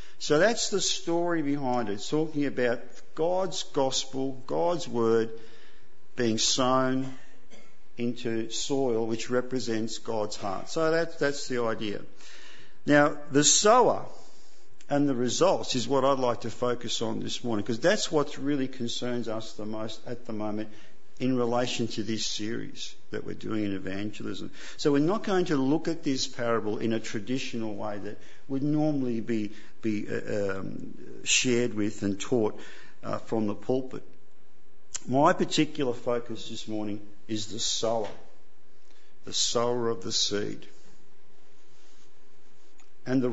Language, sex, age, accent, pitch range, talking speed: English, male, 50-69, Australian, 110-140 Hz, 145 wpm